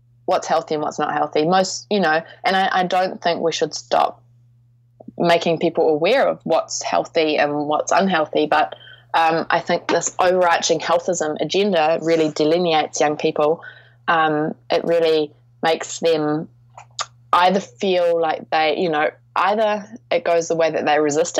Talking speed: 160 wpm